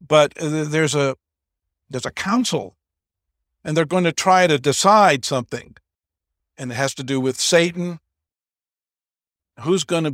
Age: 50-69